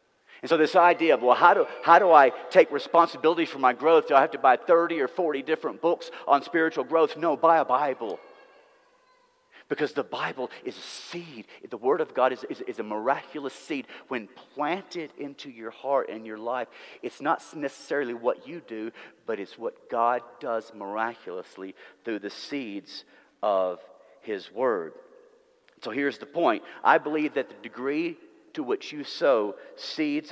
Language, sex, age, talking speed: English, male, 50-69, 175 wpm